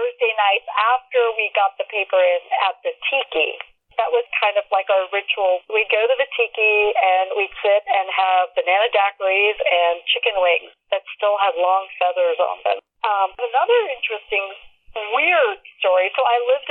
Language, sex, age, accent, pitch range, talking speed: English, female, 50-69, American, 195-255 Hz, 165 wpm